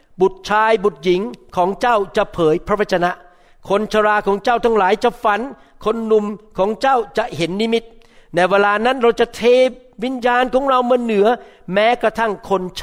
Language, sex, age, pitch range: Thai, male, 60-79, 175-220 Hz